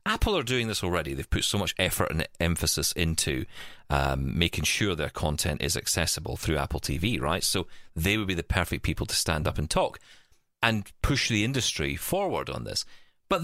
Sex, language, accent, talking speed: male, English, British, 195 wpm